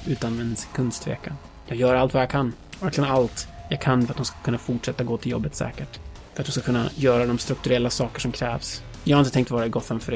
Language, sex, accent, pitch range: Swedish, male, native, 115-135 Hz